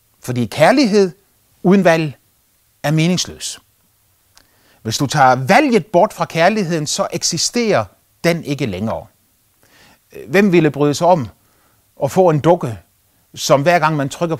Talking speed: 135 wpm